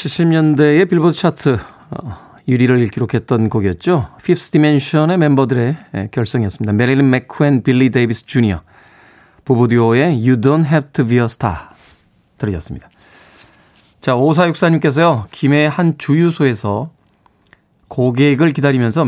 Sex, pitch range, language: male, 120-165 Hz, Korean